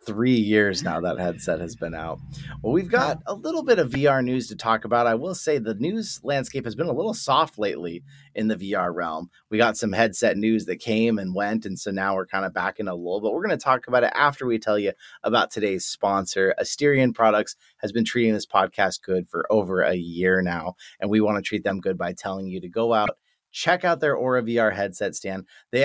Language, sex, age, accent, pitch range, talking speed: English, male, 30-49, American, 100-130 Hz, 240 wpm